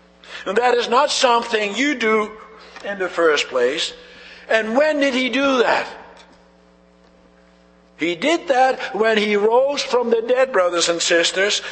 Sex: male